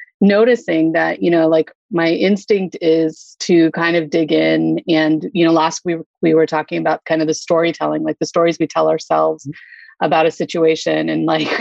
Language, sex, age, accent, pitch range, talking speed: English, female, 30-49, American, 160-205 Hz, 190 wpm